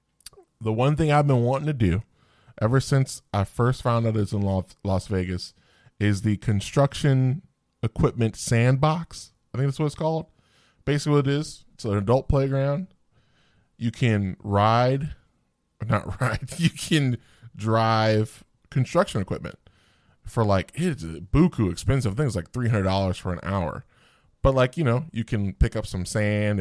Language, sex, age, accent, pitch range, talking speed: English, male, 10-29, American, 100-130 Hz, 155 wpm